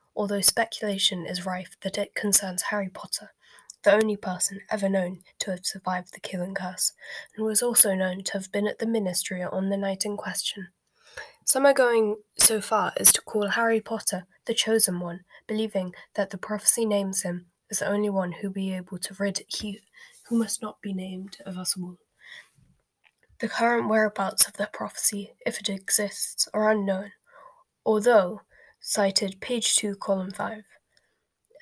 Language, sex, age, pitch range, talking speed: English, female, 10-29, 195-220 Hz, 170 wpm